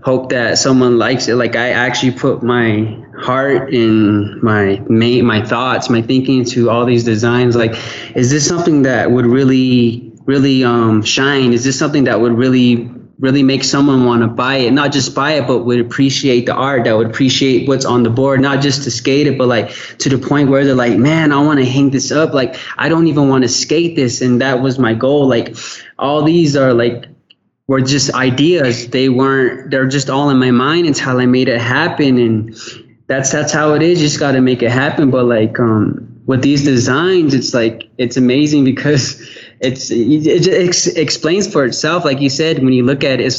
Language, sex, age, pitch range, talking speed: English, male, 20-39, 120-140 Hz, 210 wpm